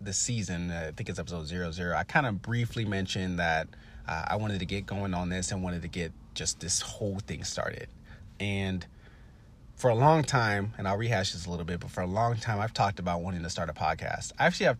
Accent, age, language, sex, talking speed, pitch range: American, 30-49, English, male, 235 wpm, 85-105 Hz